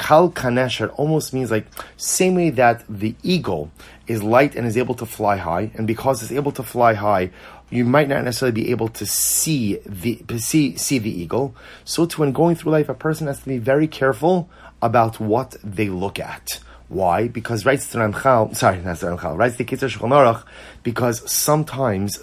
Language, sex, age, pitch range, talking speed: English, male, 30-49, 110-135 Hz, 155 wpm